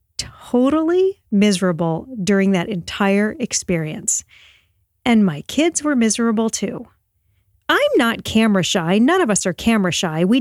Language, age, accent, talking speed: English, 40-59, American, 135 wpm